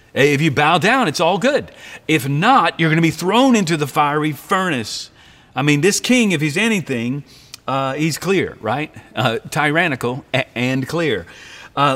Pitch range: 115-155 Hz